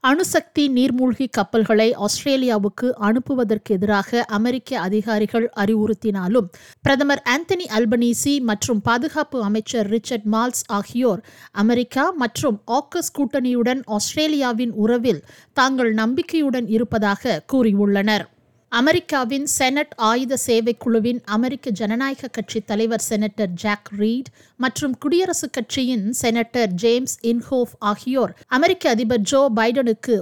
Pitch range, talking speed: 220-260 Hz, 100 wpm